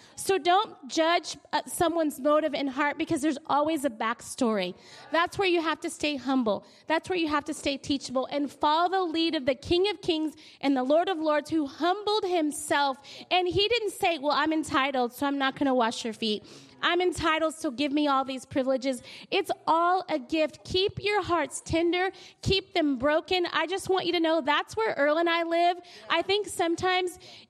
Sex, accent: female, American